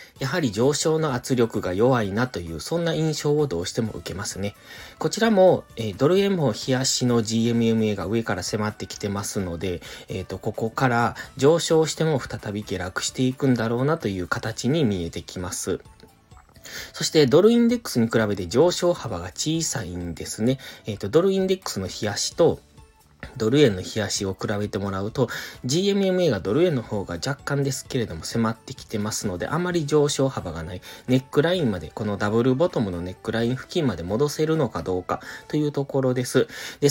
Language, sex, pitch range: Japanese, male, 100-145 Hz